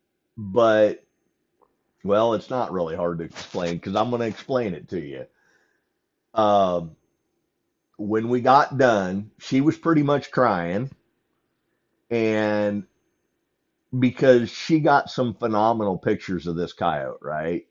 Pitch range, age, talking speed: 95-125 Hz, 50-69, 130 wpm